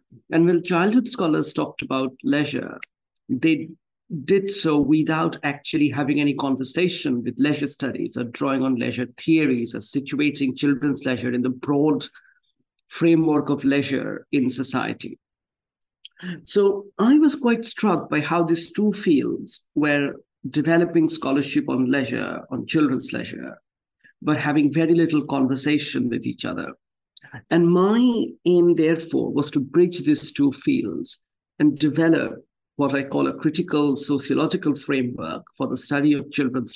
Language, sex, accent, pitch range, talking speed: English, male, Indian, 140-180 Hz, 140 wpm